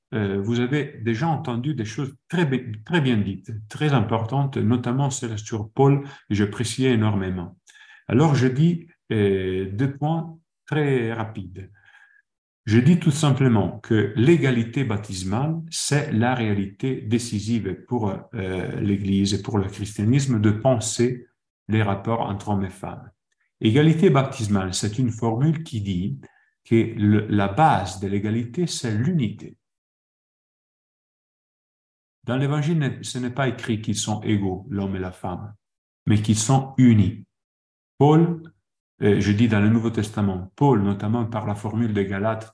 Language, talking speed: French, 135 wpm